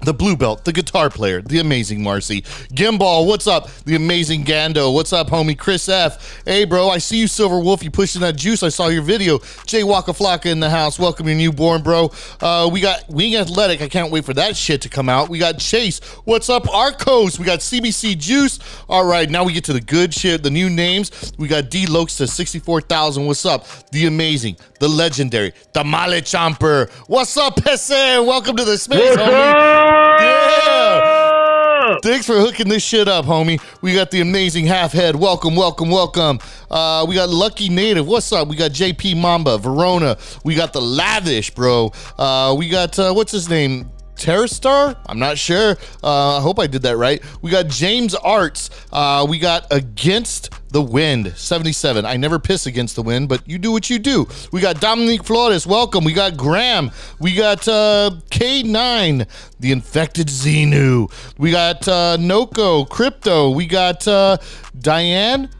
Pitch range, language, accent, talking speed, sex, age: 145-200 Hz, English, American, 190 wpm, male, 40-59